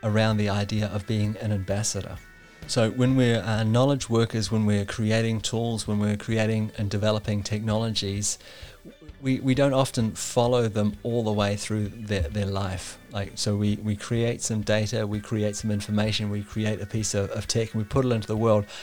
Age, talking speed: 30-49, 190 wpm